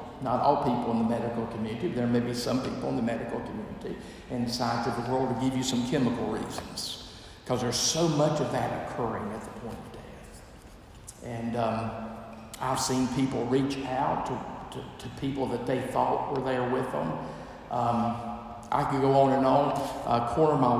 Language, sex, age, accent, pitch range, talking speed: English, male, 50-69, American, 115-135 Hz, 190 wpm